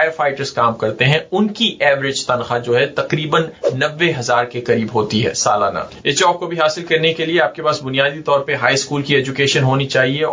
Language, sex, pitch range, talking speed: Urdu, male, 130-165 Hz, 220 wpm